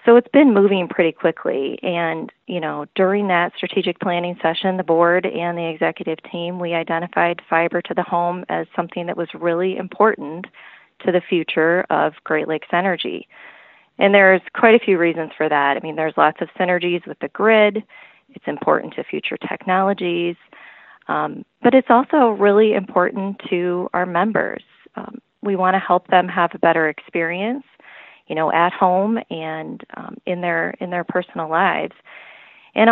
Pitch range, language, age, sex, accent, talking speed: 175-205 Hz, English, 30-49, female, American, 170 wpm